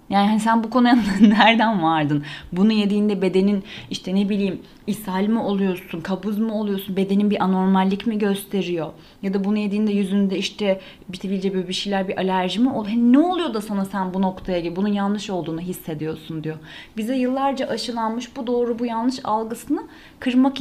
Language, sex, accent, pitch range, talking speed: Turkish, female, native, 195-240 Hz, 180 wpm